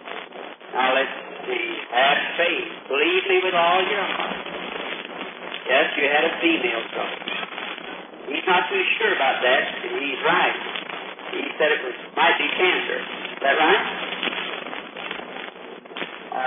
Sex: male